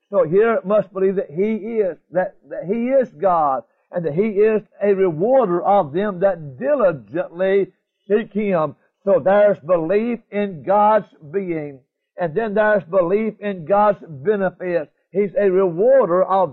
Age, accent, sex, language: 60-79, American, male, English